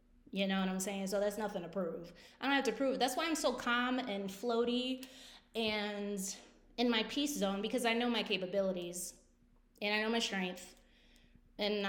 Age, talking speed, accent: 20-39, 195 wpm, American